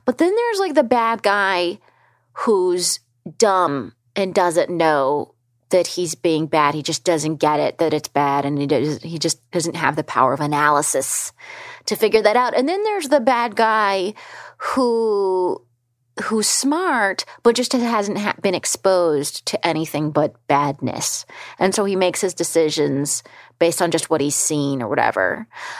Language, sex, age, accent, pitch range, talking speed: English, female, 30-49, American, 155-225 Hz, 165 wpm